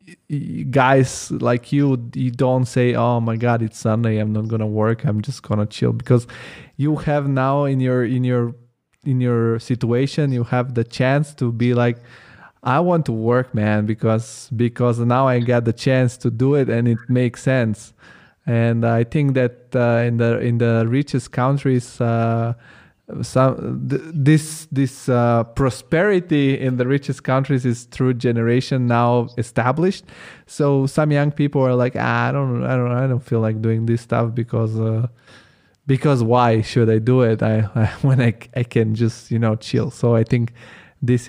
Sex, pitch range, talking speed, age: male, 115-130 Hz, 180 wpm, 20-39